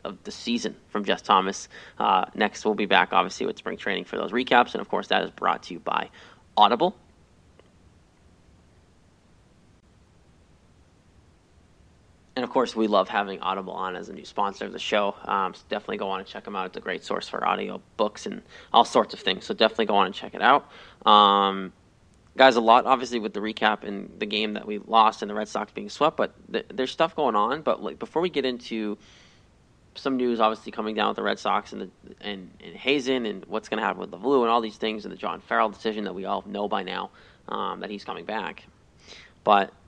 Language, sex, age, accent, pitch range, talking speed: English, male, 20-39, American, 90-120 Hz, 220 wpm